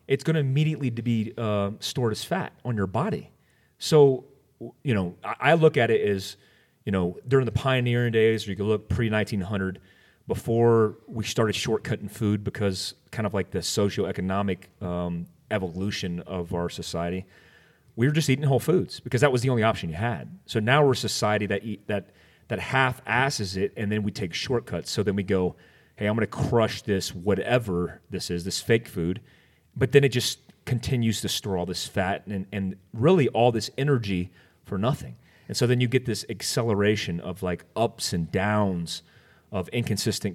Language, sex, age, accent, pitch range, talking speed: English, male, 30-49, American, 95-120 Hz, 185 wpm